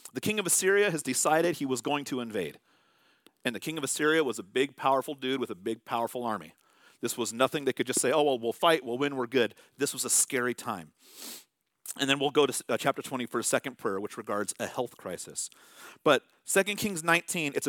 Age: 40-59